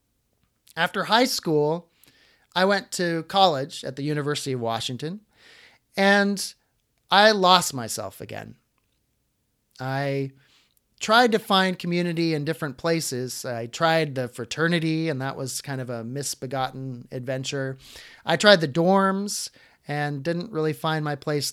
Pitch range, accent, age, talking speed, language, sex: 130-185 Hz, American, 30-49, 130 wpm, English, male